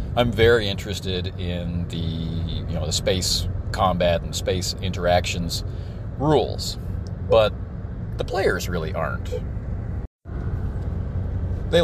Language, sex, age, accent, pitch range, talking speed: English, male, 40-59, American, 90-100 Hz, 100 wpm